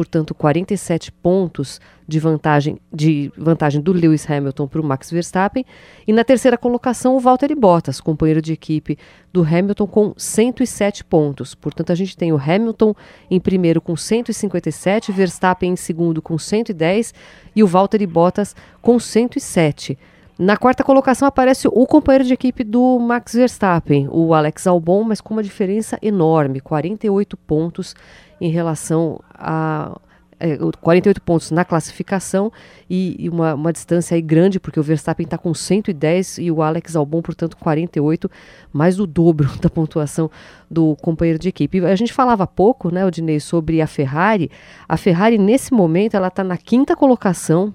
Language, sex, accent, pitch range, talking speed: Portuguese, female, Brazilian, 160-210 Hz, 155 wpm